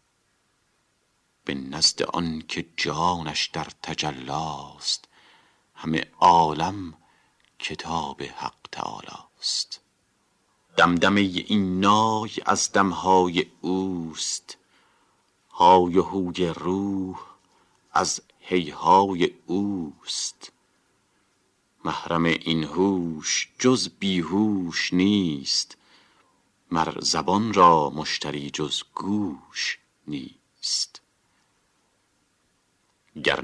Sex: male